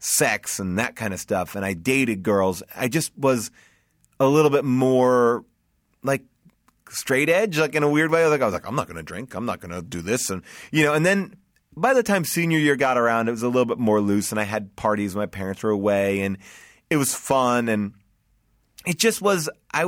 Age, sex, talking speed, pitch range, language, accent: 30-49, male, 230 wpm, 95-140 Hz, English, American